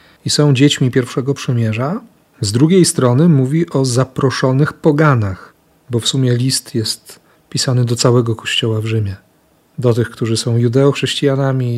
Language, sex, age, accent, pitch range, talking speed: Polish, male, 40-59, native, 110-135 Hz, 145 wpm